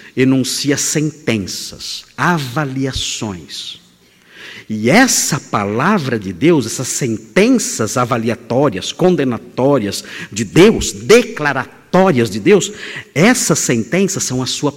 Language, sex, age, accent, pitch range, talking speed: Portuguese, male, 50-69, Brazilian, 135-215 Hz, 90 wpm